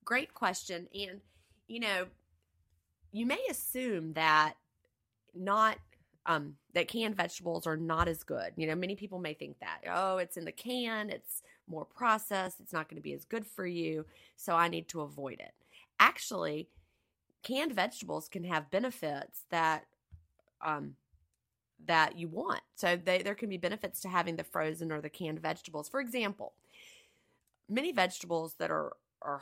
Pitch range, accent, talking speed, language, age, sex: 155-195 Hz, American, 165 wpm, English, 30-49, female